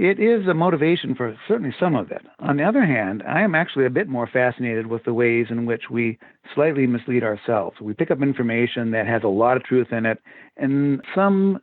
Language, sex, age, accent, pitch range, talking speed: English, male, 50-69, American, 115-135 Hz, 220 wpm